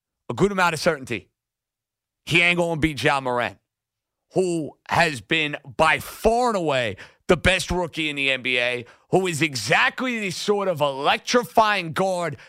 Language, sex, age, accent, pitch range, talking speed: English, male, 50-69, American, 140-210 Hz, 160 wpm